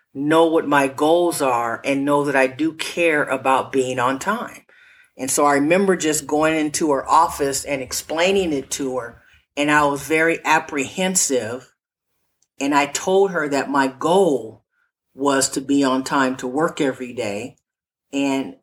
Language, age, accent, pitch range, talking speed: English, 50-69, American, 130-165 Hz, 165 wpm